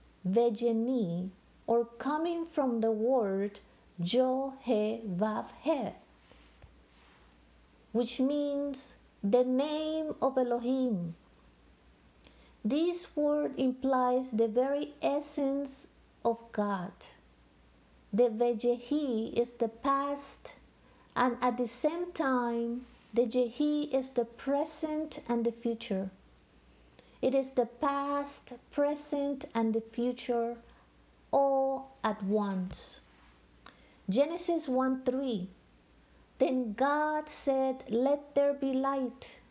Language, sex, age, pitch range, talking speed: English, female, 50-69, 225-275 Hz, 95 wpm